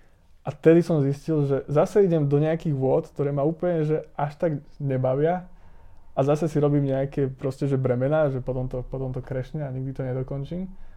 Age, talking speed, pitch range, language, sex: 20-39, 190 wpm, 125-140 Hz, Czech, male